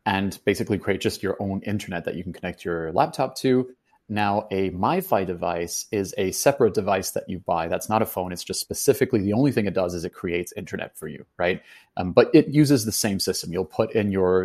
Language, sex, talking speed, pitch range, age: English, male, 230 wpm, 90-105 Hz, 30-49